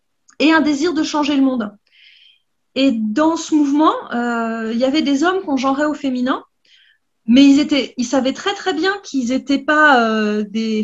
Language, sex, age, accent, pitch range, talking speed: French, female, 30-49, French, 245-315 Hz, 190 wpm